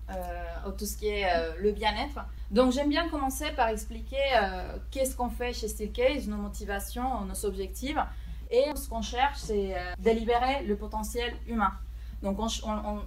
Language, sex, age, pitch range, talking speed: French, female, 30-49, 200-250 Hz, 175 wpm